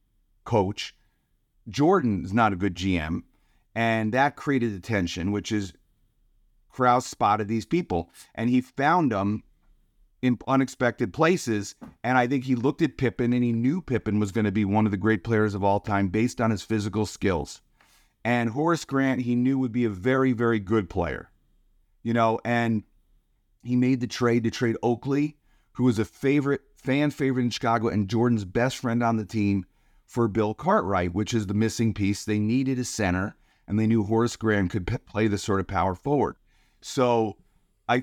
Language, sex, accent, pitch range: English, male, American, 105-125 Hz